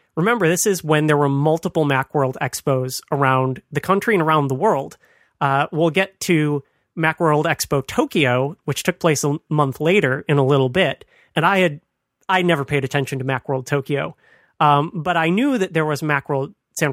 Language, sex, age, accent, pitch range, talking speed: English, male, 30-49, American, 140-170 Hz, 185 wpm